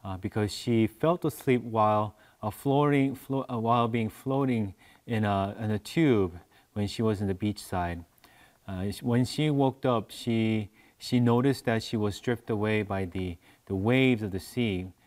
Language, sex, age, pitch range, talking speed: English, male, 30-49, 100-125 Hz, 175 wpm